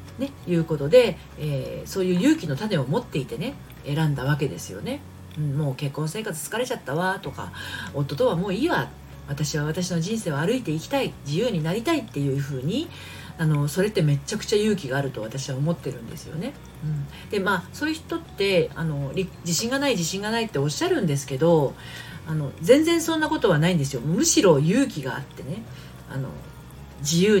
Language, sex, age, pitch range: Japanese, female, 40-59, 145-185 Hz